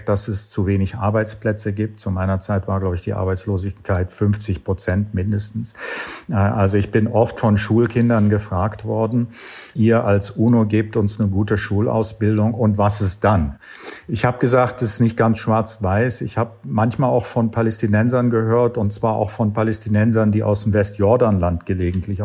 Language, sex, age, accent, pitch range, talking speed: German, male, 50-69, German, 100-115 Hz, 165 wpm